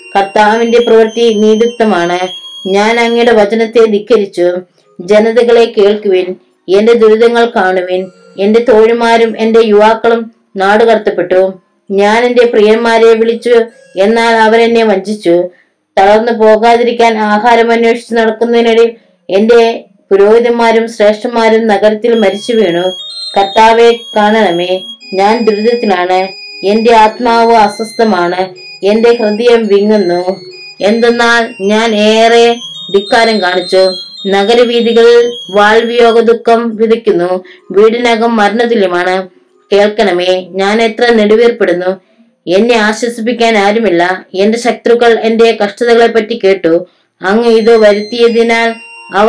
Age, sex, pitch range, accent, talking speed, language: 20-39, female, 195-230 Hz, native, 85 wpm, Malayalam